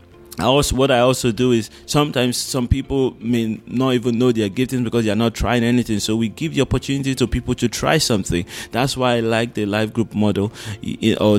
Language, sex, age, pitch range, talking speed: English, male, 20-39, 100-125 Hz, 210 wpm